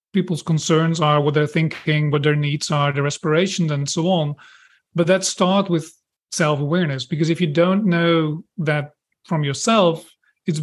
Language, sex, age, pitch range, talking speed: English, male, 40-59, 150-180 Hz, 165 wpm